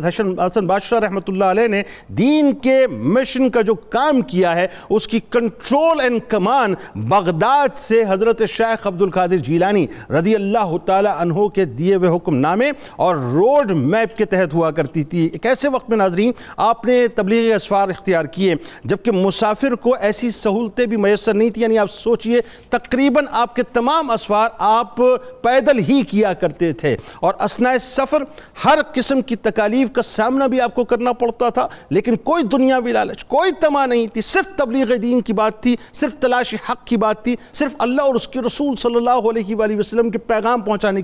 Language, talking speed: Urdu, 180 wpm